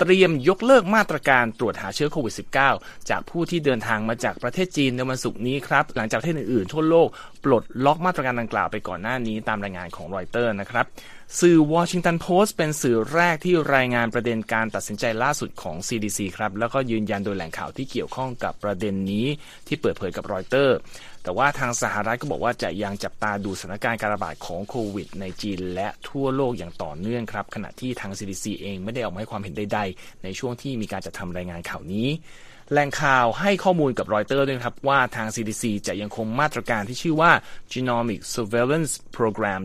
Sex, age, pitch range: male, 20-39, 105-140 Hz